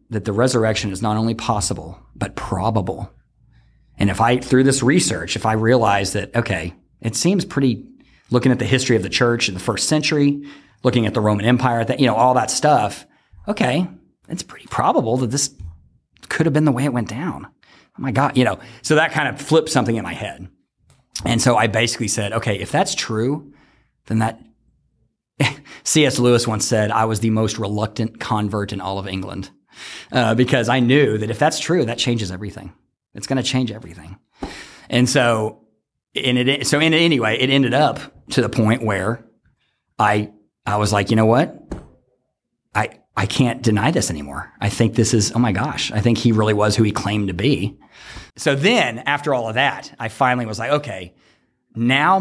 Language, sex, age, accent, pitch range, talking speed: English, male, 40-59, American, 105-135 Hz, 195 wpm